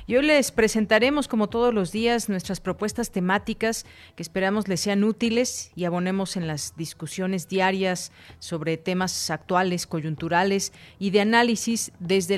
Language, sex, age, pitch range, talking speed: Spanish, female, 40-59, 180-220 Hz, 145 wpm